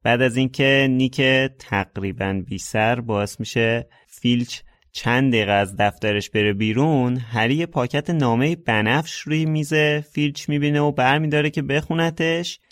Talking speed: 125 wpm